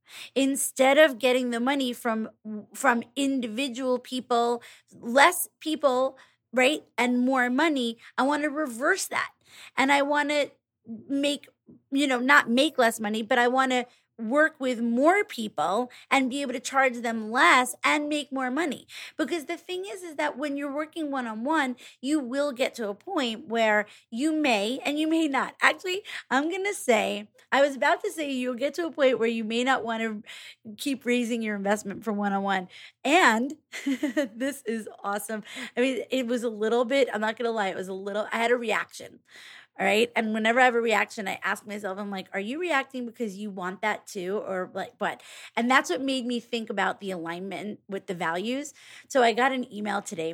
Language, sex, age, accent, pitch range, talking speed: English, female, 30-49, American, 205-270 Hz, 200 wpm